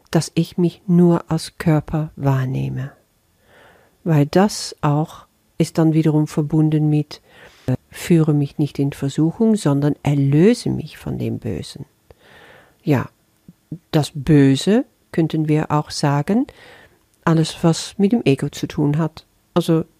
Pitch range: 135-170 Hz